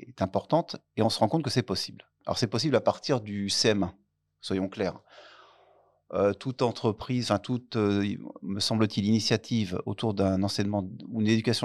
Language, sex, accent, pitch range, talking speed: French, male, French, 100-120 Hz, 165 wpm